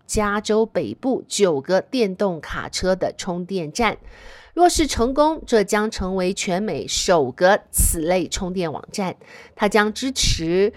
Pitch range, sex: 185-260 Hz, female